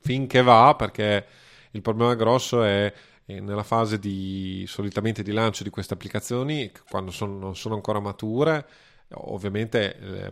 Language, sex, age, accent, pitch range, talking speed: Italian, male, 30-49, native, 100-120 Hz, 140 wpm